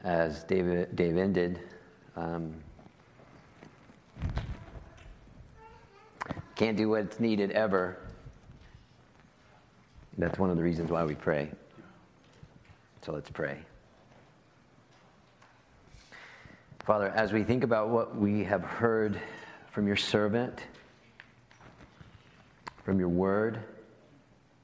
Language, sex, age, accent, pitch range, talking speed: English, male, 40-59, American, 95-115 Hz, 90 wpm